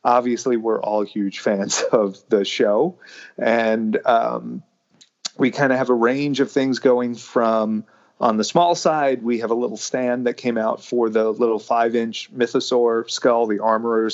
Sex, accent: male, American